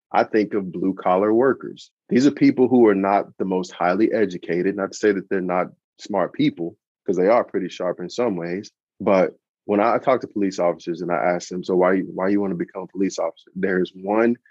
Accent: American